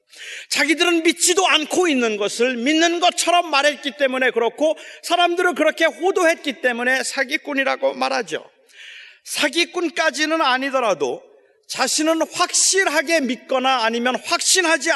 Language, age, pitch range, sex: Korean, 40-59, 230-320 Hz, male